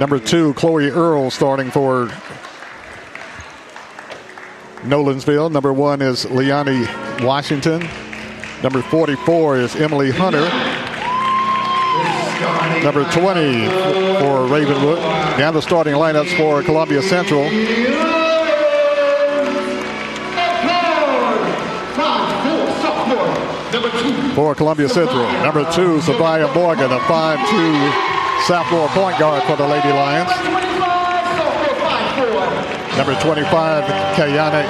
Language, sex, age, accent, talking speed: English, male, 50-69, American, 85 wpm